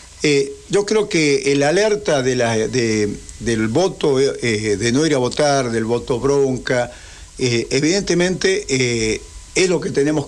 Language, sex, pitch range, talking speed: Spanish, male, 115-160 Hz, 160 wpm